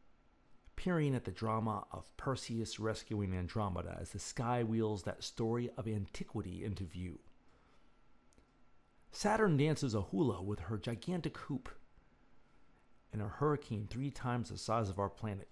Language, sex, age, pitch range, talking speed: English, male, 50-69, 100-125 Hz, 140 wpm